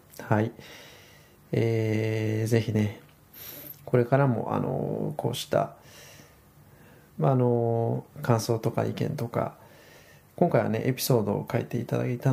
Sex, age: male, 20-39